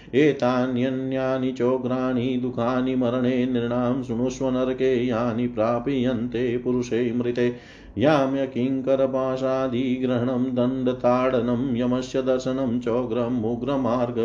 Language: Hindi